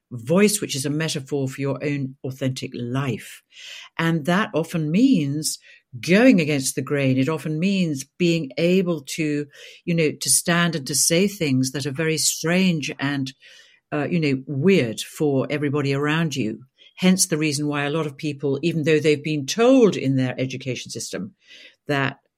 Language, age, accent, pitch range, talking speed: English, 60-79, British, 140-170 Hz, 170 wpm